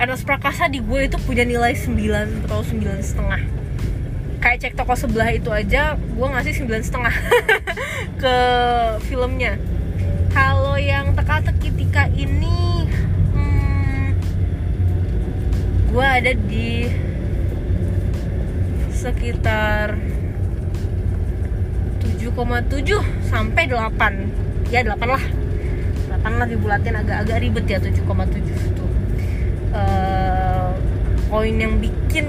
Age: 20-39